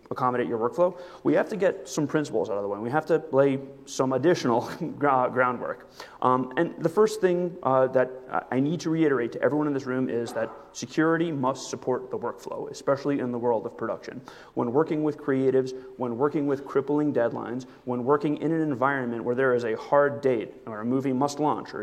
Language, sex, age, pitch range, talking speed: English, male, 30-49, 125-150 Hz, 205 wpm